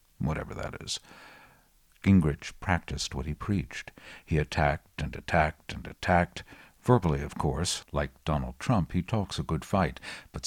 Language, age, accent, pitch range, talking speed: English, 60-79, American, 75-95 Hz, 150 wpm